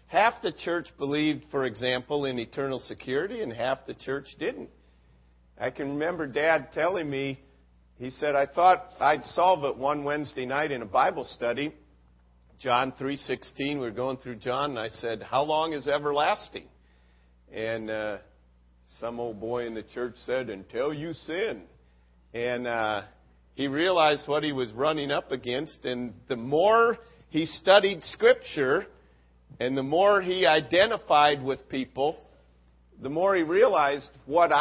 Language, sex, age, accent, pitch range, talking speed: English, male, 50-69, American, 115-155 Hz, 150 wpm